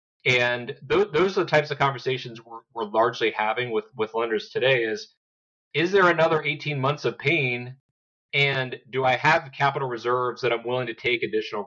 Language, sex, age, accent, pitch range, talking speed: English, male, 30-49, American, 120-145 Hz, 180 wpm